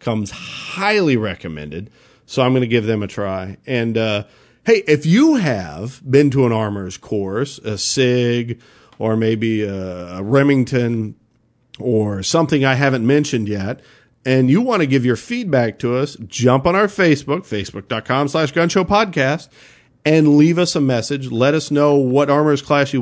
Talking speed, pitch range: 160 wpm, 115-150 Hz